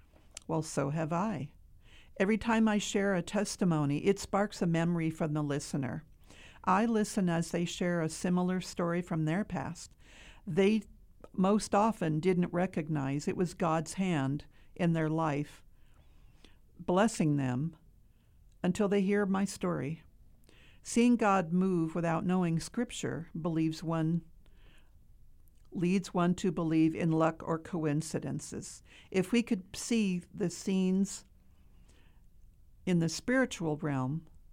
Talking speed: 125 wpm